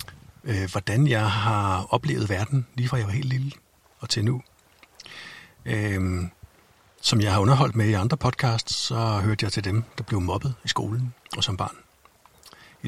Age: 60-79